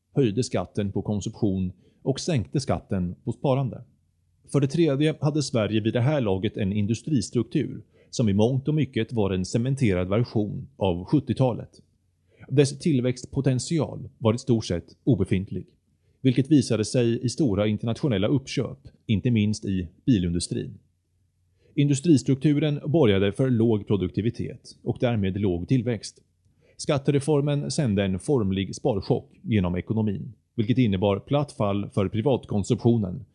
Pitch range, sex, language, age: 100-135 Hz, male, Swedish, 30-49